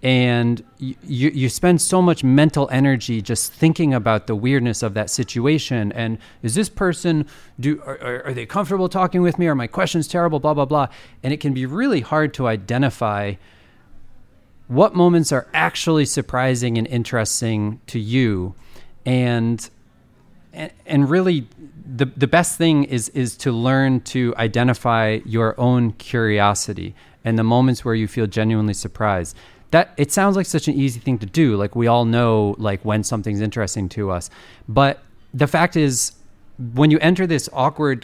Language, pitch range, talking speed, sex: Dutch, 110-145 Hz, 165 wpm, male